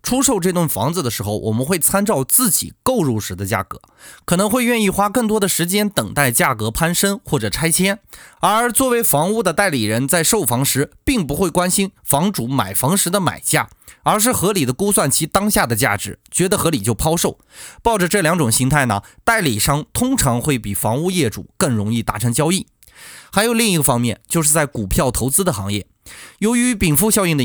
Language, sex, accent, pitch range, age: Chinese, male, native, 120-200 Hz, 20-39